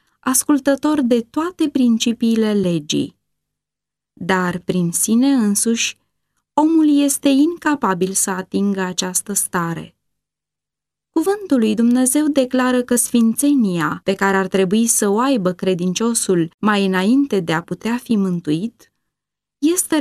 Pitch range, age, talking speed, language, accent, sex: 195-260 Hz, 20-39, 115 wpm, Romanian, native, female